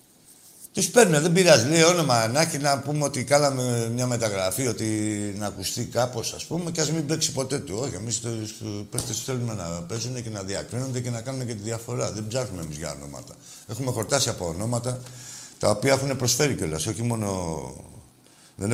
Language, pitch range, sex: Greek, 95-130 Hz, male